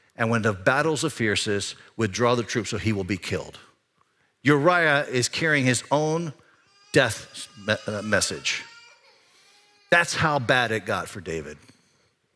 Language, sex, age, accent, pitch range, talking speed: English, male, 50-69, American, 105-135 Hz, 135 wpm